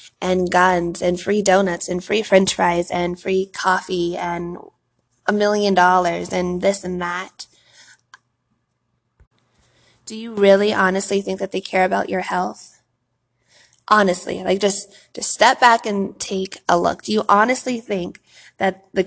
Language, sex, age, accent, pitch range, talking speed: English, female, 20-39, American, 180-200 Hz, 150 wpm